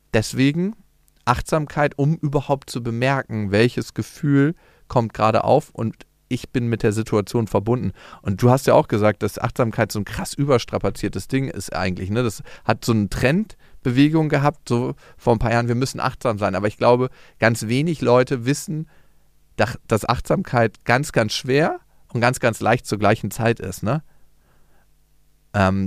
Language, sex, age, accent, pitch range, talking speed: German, male, 40-59, German, 105-135 Hz, 160 wpm